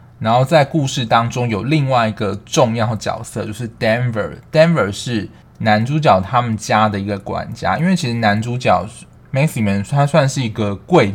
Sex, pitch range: male, 100-125 Hz